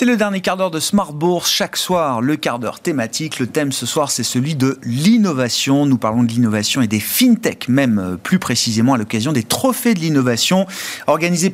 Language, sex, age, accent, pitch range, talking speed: French, male, 40-59, French, 120-170 Hz, 205 wpm